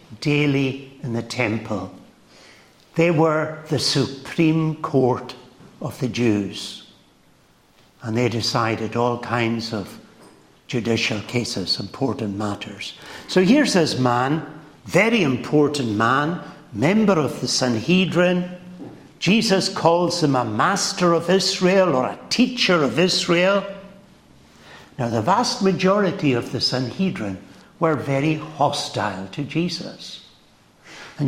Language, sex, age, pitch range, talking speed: English, male, 60-79, 120-170 Hz, 110 wpm